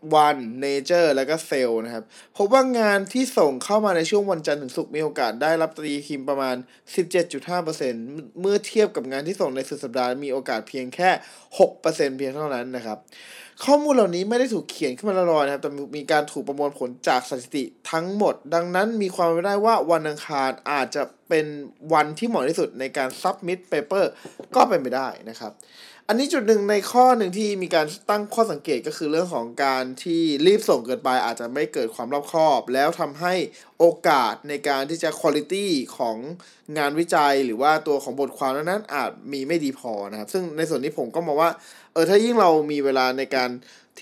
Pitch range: 135-185 Hz